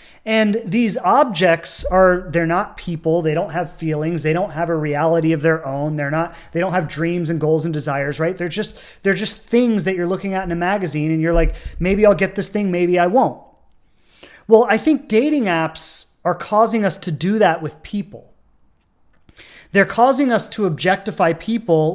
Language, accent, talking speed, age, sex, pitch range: English, American, 195 wpm, 30-49, male, 165-220 Hz